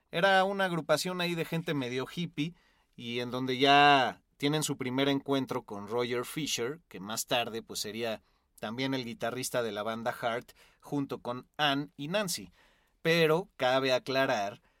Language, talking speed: Spanish, 160 wpm